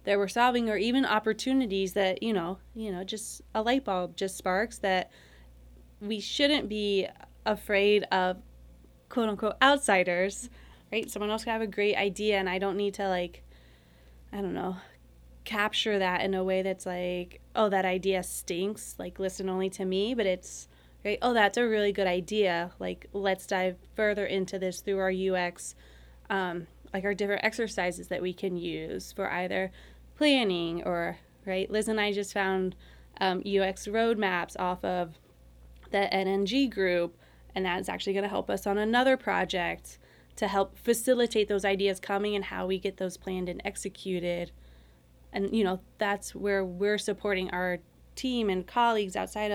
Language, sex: English, female